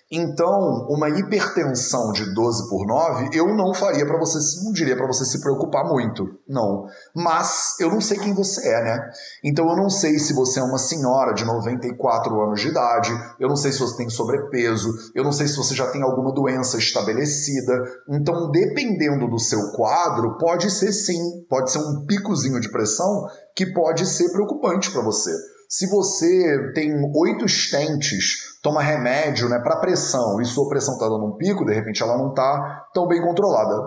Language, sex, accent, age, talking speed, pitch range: Portuguese, male, Brazilian, 30-49, 185 wpm, 125-175 Hz